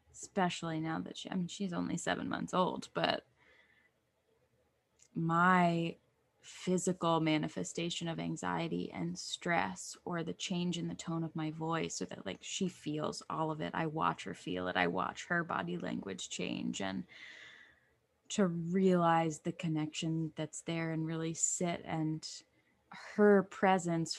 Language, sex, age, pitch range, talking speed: English, female, 20-39, 160-190 Hz, 145 wpm